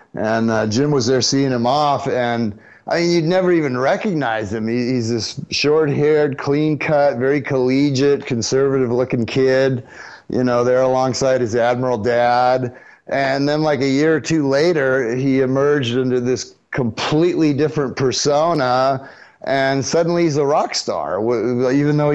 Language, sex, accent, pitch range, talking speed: English, male, American, 120-145 Hz, 150 wpm